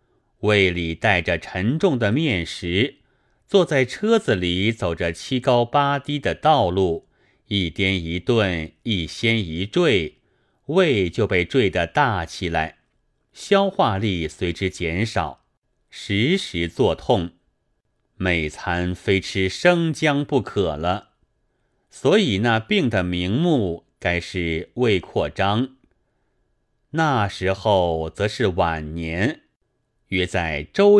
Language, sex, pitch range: Chinese, male, 90-130 Hz